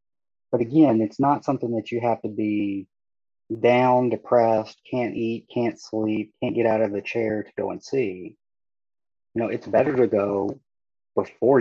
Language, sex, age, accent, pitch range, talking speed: English, male, 30-49, American, 105-125 Hz, 170 wpm